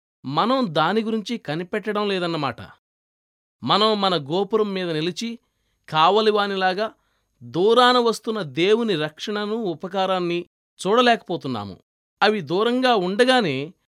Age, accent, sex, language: 20-39, native, male, Telugu